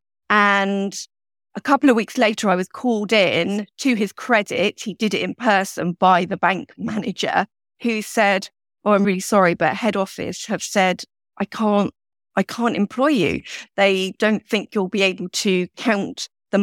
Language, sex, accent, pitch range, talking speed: English, female, British, 185-225 Hz, 175 wpm